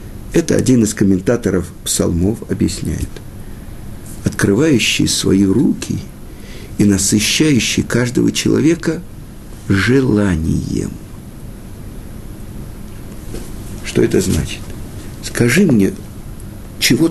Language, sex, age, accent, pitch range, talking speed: Russian, male, 50-69, native, 105-160 Hz, 70 wpm